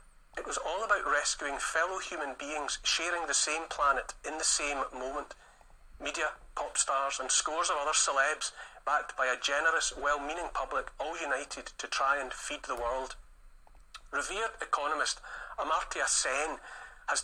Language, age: English, 40-59